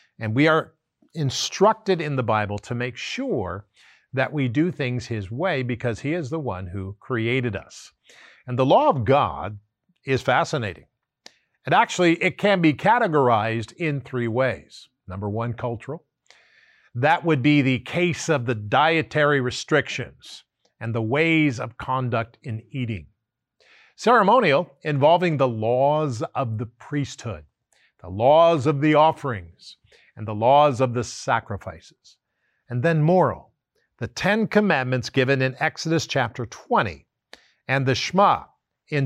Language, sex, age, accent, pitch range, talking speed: English, male, 50-69, American, 120-155 Hz, 140 wpm